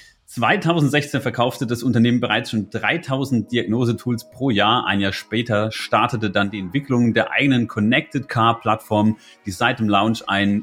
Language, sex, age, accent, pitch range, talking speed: German, male, 30-49, German, 110-140 Hz, 145 wpm